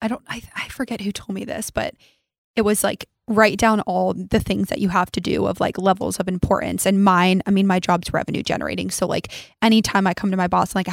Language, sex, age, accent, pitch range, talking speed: English, female, 20-39, American, 190-225 Hz, 245 wpm